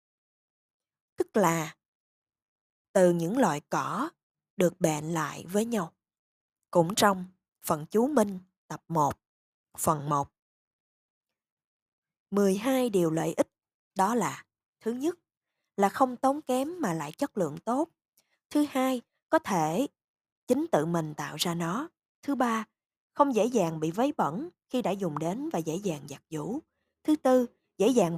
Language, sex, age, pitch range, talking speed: Vietnamese, female, 20-39, 165-255 Hz, 145 wpm